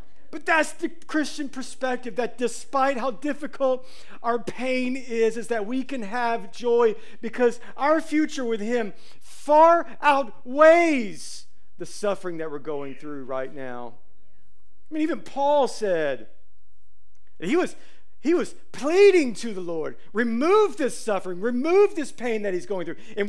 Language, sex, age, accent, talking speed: English, male, 40-59, American, 150 wpm